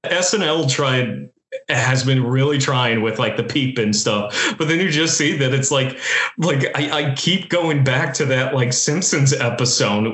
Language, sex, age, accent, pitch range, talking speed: English, male, 30-49, American, 120-155 Hz, 185 wpm